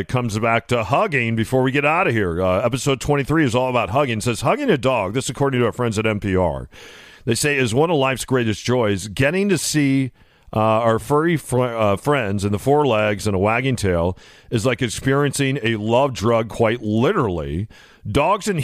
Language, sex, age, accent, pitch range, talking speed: English, male, 50-69, American, 100-135 Hz, 205 wpm